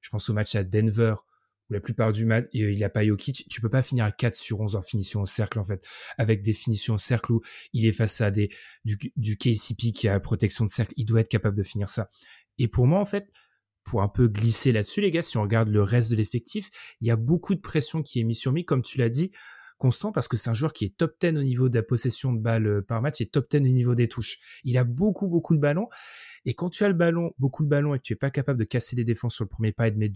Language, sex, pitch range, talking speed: French, male, 110-140 Hz, 295 wpm